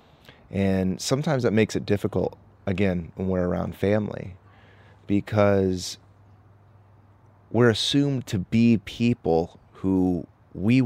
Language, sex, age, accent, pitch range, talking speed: English, male, 30-49, American, 95-110 Hz, 105 wpm